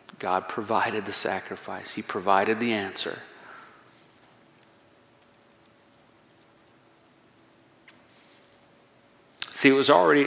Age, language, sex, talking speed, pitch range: 40-59, English, male, 70 wpm, 105-125 Hz